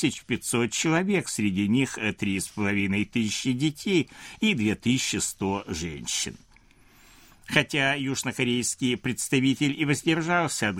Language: Russian